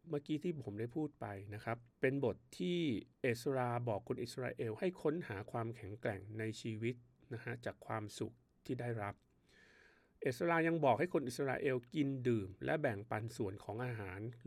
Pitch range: 110-140 Hz